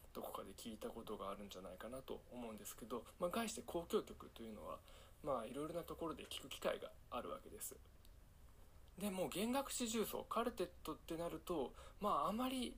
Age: 20-39